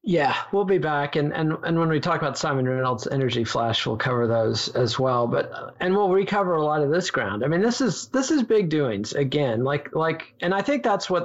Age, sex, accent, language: 40-59, male, American, English